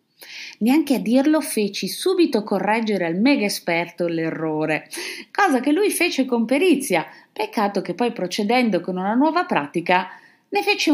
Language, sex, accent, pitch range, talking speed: Italian, female, native, 180-280 Hz, 145 wpm